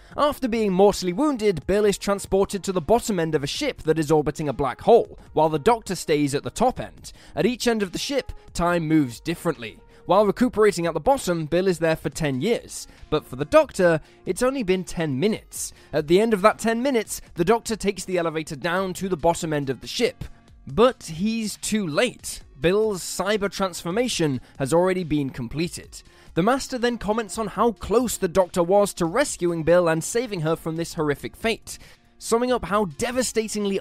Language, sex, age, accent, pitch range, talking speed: English, male, 10-29, British, 160-215 Hz, 200 wpm